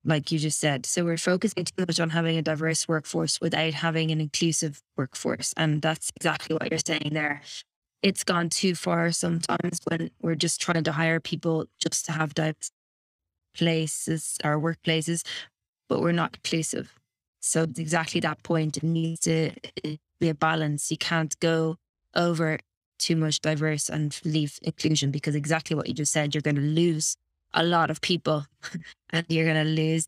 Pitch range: 155-170 Hz